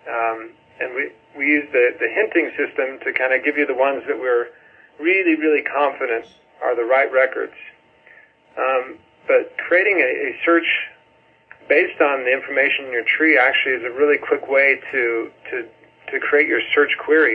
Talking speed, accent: 175 wpm, American